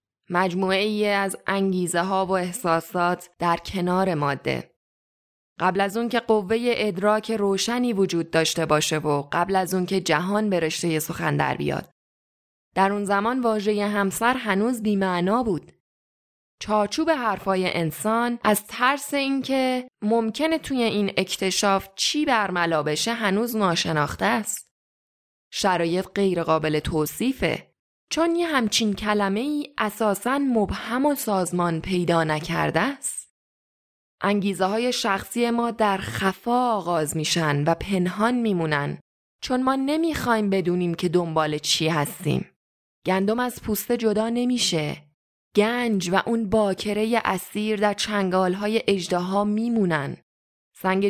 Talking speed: 125 wpm